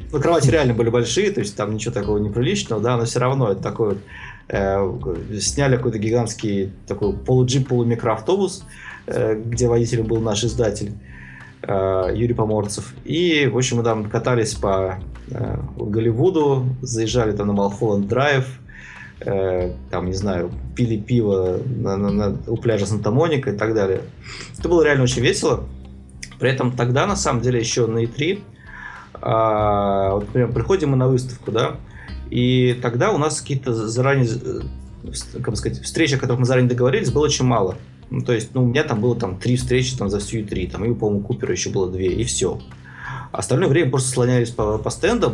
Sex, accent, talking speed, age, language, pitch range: male, native, 175 wpm, 20-39, Russian, 100-125 Hz